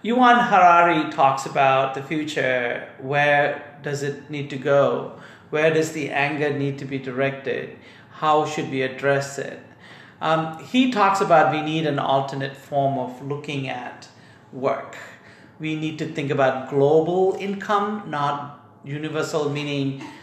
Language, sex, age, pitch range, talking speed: English, male, 40-59, 135-160 Hz, 140 wpm